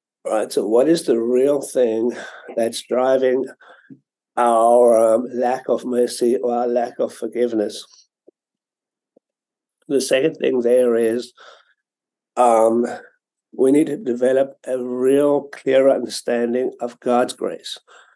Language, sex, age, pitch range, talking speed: English, male, 60-79, 120-130 Hz, 120 wpm